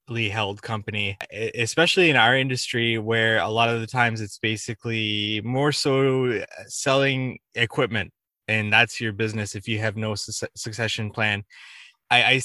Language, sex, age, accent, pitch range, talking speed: English, male, 20-39, American, 110-130 Hz, 145 wpm